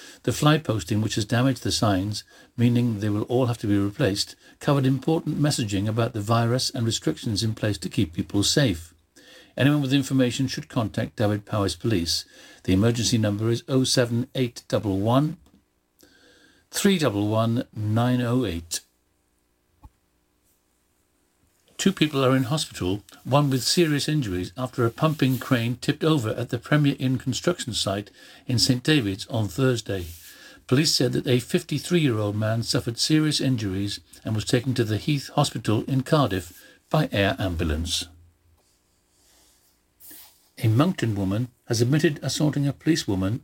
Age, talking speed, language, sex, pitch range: 60-79, 135 wpm, English, male, 100-135 Hz